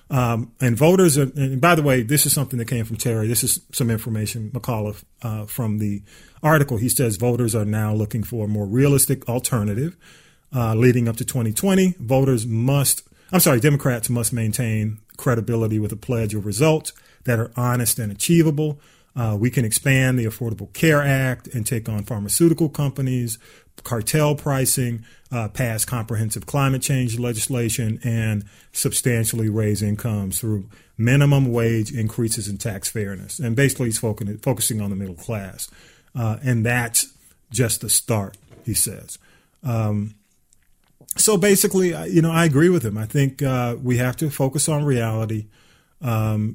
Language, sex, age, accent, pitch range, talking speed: English, male, 40-59, American, 110-135 Hz, 160 wpm